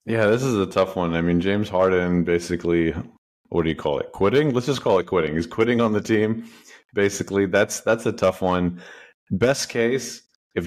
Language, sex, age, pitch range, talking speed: English, male, 30-49, 85-105 Hz, 200 wpm